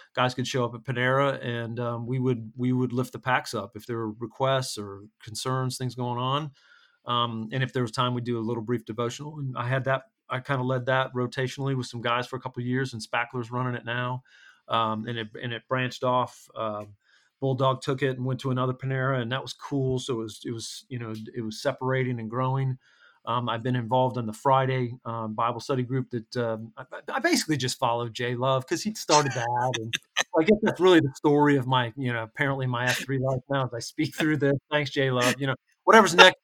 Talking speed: 240 wpm